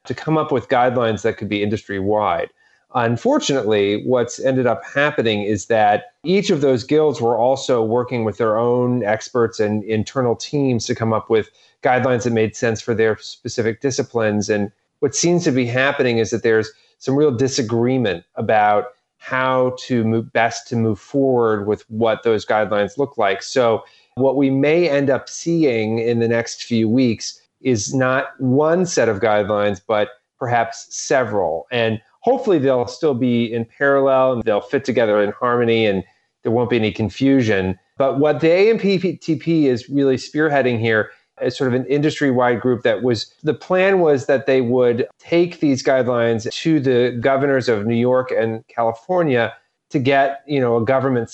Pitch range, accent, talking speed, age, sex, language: 110-135 Hz, American, 170 wpm, 30-49, male, English